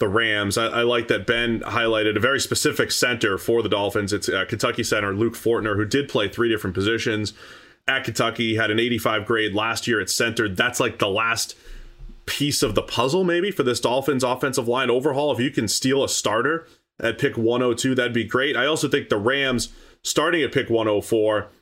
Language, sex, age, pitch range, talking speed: English, male, 30-49, 110-130 Hz, 205 wpm